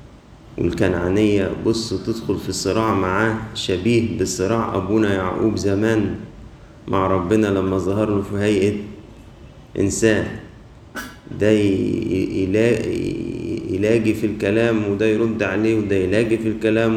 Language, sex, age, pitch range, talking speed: Arabic, male, 30-49, 95-115 Hz, 105 wpm